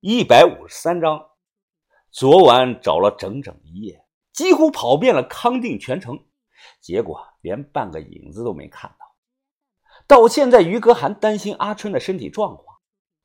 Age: 50-69